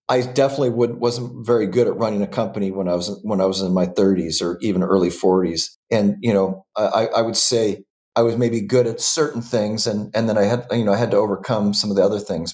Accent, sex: American, male